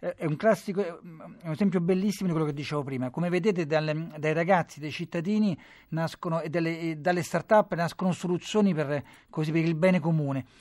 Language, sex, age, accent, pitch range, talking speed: Italian, male, 40-59, native, 160-205 Hz, 185 wpm